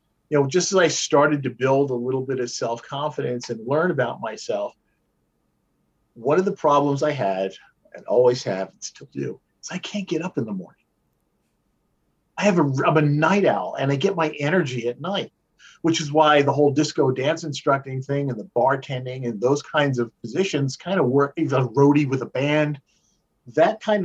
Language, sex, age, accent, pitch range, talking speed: English, male, 50-69, American, 125-160 Hz, 195 wpm